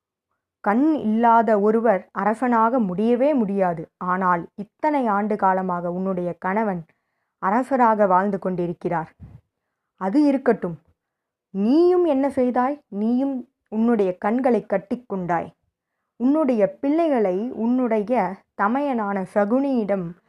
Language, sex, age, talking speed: Tamil, female, 20-39, 85 wpm